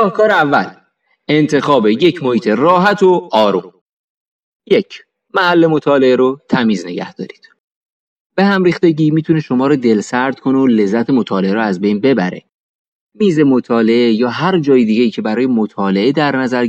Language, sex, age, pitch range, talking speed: Persian, male, 30-49, 125-170 Hz, 150 wpm